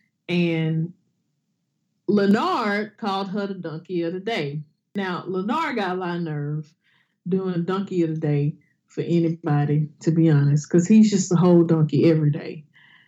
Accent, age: American, 20-39